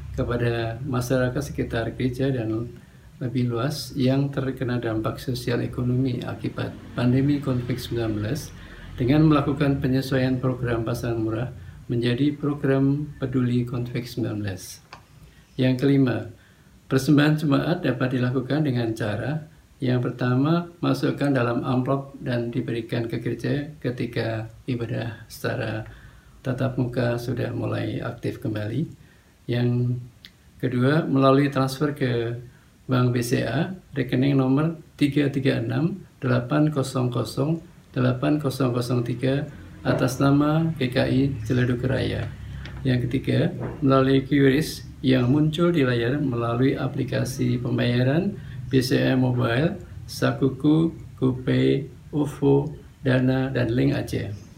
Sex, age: male, 50-69